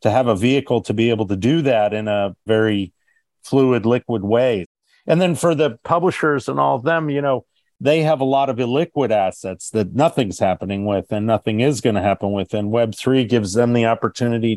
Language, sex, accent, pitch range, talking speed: English, male, American, 110-130 Hz, 210 wpm